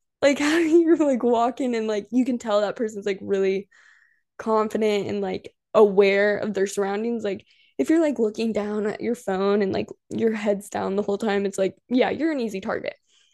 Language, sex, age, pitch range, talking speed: English, female, 10-29, 205-255 Hz, 200 wpm